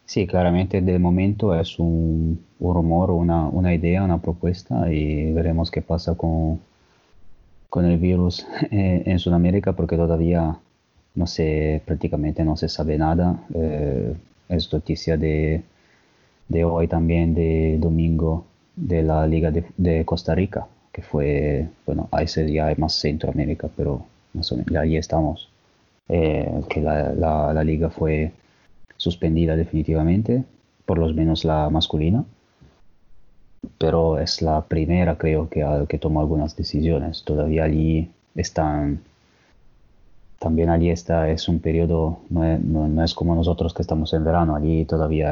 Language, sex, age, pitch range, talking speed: Spanish, male, 20-39, 80-85 Hz, 145 wpm